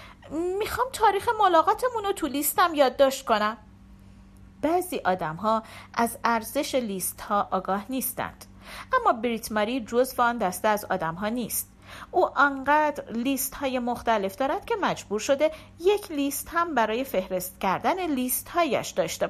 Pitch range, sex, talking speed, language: 215-315 Hz, female, 130 wpm, Persian